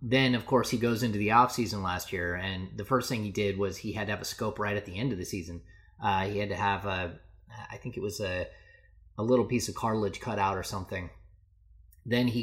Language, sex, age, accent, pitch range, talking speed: English, male, 30-49, American, 95-115 Hz, 250 wpm